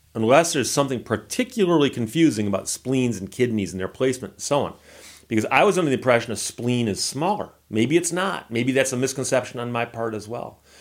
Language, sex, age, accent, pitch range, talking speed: English, male, 40-59, American, 105-140 Hz, 205 wpm